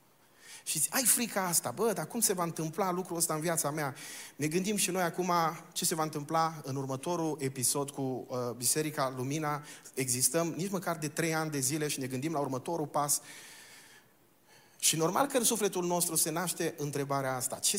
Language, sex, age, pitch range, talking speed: Romanian, male, 30-49, 140-175 Hz, 190 wpm